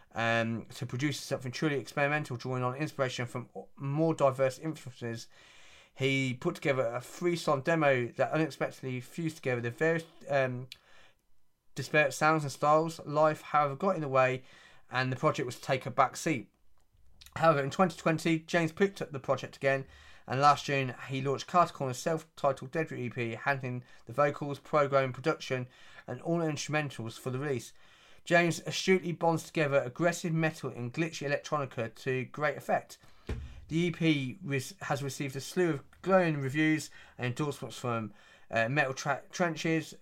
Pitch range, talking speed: 130-160 Hz, 160 wpm